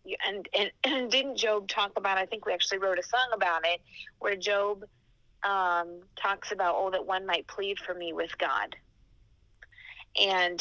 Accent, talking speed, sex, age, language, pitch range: American, 175 wpm, female, 30-49, English, 165-190 Hz